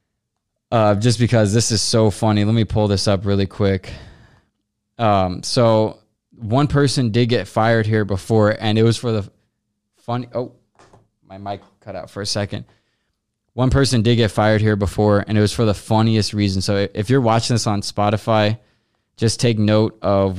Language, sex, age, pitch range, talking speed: English, male, 20-39, 100-115 Hz, 180 wpm